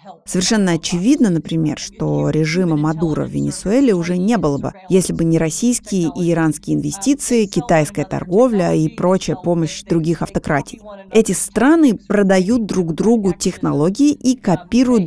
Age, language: 30-49, Russian